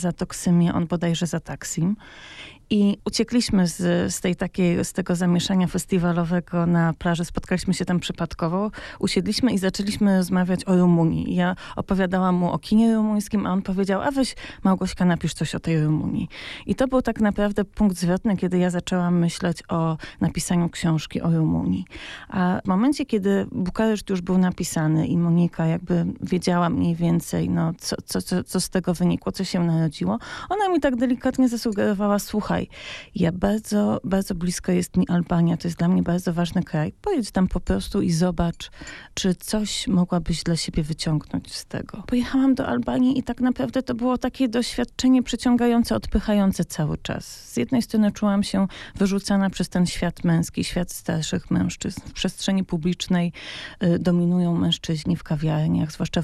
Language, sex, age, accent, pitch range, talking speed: Polish, female, 30-49, native, 175-210 Hz, 160 wpm